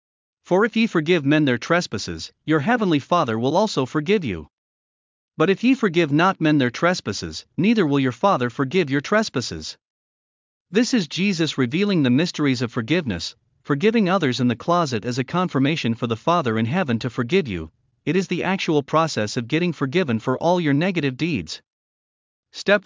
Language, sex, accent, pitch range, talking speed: English, male, American, 125-180 Hz, 175 wpm